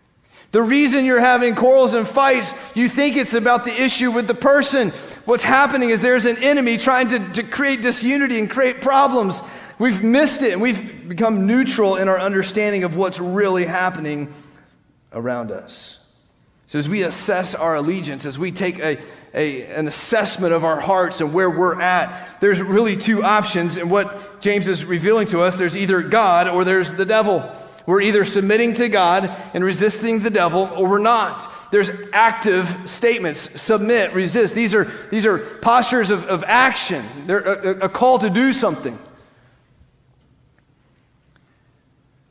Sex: male